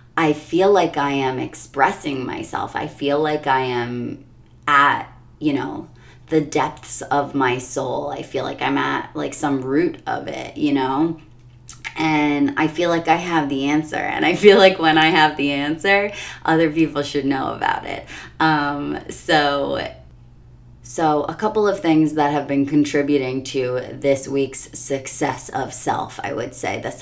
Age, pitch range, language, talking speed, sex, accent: 30-49, 130-155 Hz, English, 170 wpm, female, American